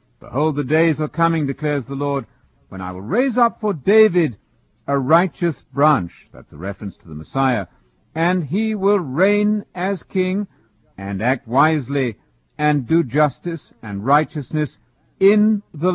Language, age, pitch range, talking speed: English, 60-79, 120-185 Hz, 150 wpm